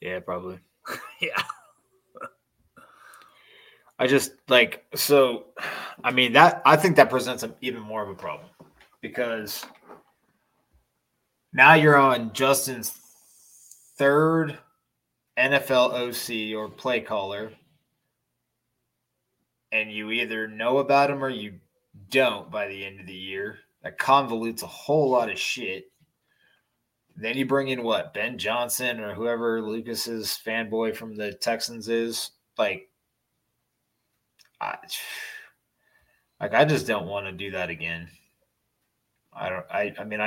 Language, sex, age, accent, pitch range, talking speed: English, male, 20-39, American, 105-135 Hz, 125 wpm